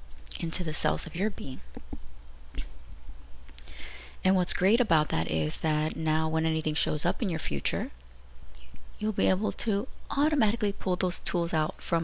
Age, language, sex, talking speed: 20-39, English, female, 155 wpm